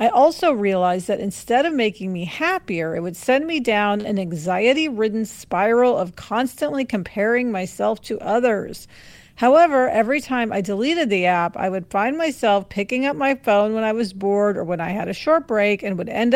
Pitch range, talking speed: 190-260 Hz, 190 wpm